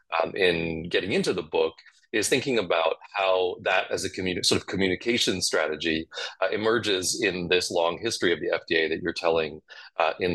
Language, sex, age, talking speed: English, male, 30-49, 180 wpm